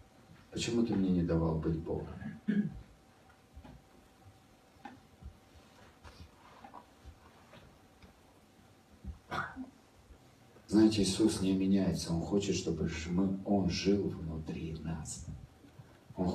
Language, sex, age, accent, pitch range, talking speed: Russian, male, 50-69, native, 85-110 Hz, 70 wpm